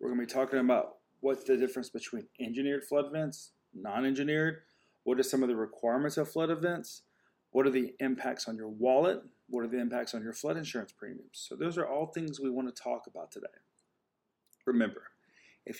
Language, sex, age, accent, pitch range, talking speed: English, male, 30-49, American, 120-150 Hz, 190 wpm